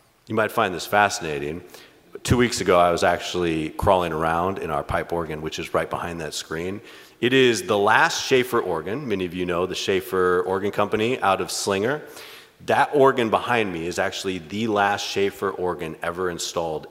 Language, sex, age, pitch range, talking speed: English, male, 30-49, 90-120 Hz, 185 wpm